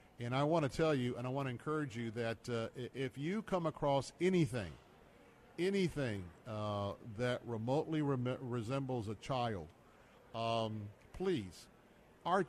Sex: male